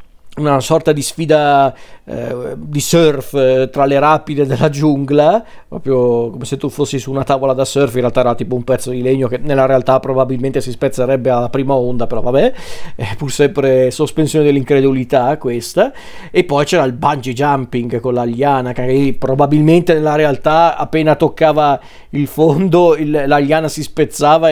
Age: 40-59